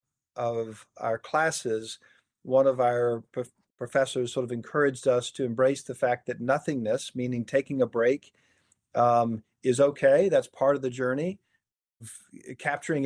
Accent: American